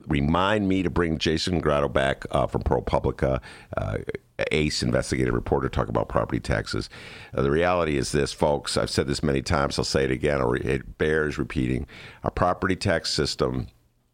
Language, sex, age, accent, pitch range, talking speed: English, male, 50-69, American, 75-95 Hz, 165 wpm